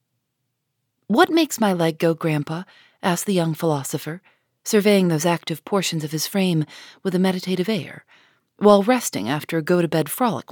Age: 40-59